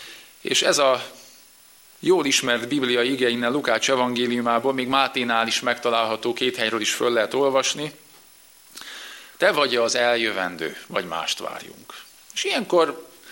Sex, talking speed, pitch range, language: male, 130 wpm, 115-135 Hz, Hungarian